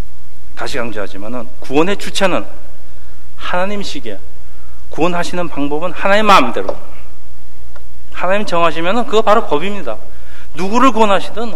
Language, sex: Korean, male